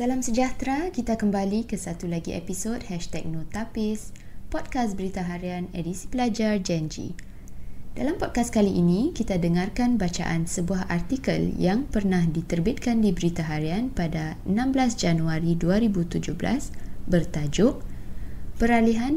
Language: Malay